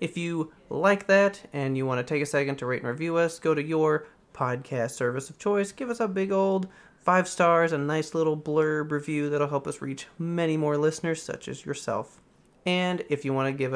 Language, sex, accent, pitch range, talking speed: English, male, American, 135-185 Hz, 225 wpm